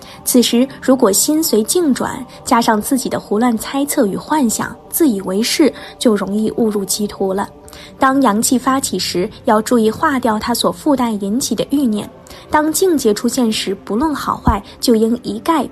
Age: 10-29